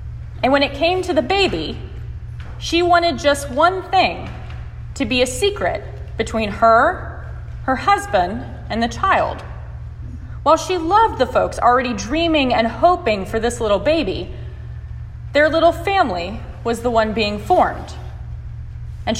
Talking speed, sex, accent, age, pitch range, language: 140 wpm, female, American, 30-49, 265-360 Hz, English